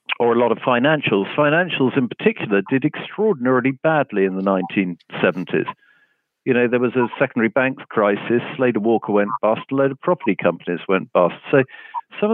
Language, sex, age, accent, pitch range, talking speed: English, male, 50-69, British, 100-140 Hz, 165 wpm